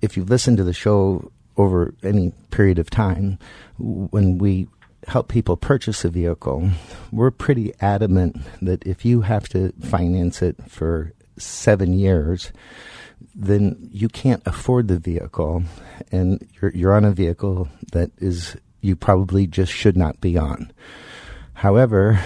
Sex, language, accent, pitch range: male, English, American, 90-105 Hz